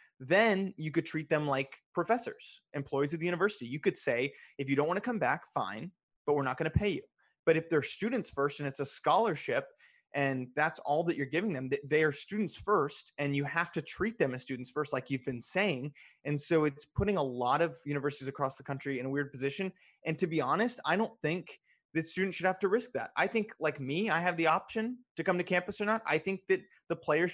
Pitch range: 135-170 Hz